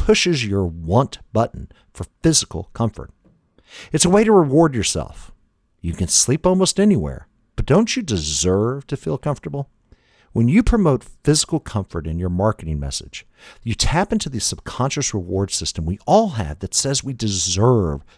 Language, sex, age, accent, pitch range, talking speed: English, male, 50-69, American, 95-145 Hz, 160 wpm